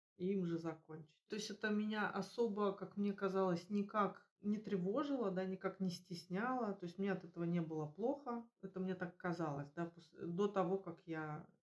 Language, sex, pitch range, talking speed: Russian, female, 170-195 Hz, 185 wpm